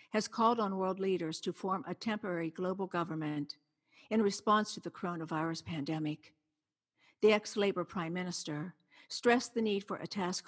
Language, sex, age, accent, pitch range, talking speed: English, female, 60-79, American, 165-205 Hz, 155 wpm